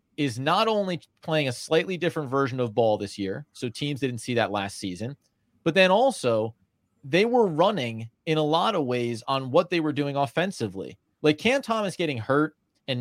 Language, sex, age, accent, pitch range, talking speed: English, male, 30-49, American, 120-170 Hz, 195 wpm